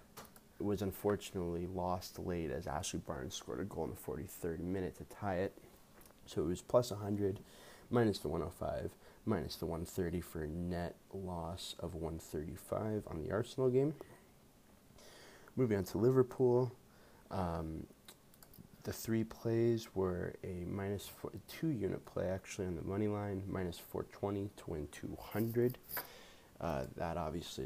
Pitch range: 85-105 Hz